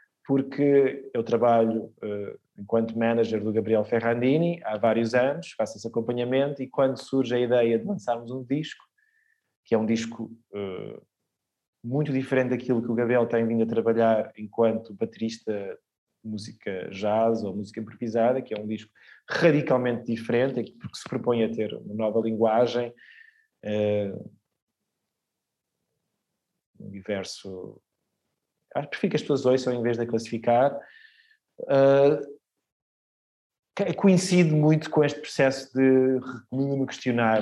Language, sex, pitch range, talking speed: Portuguese, male, 115-140 Hz, 130 wpm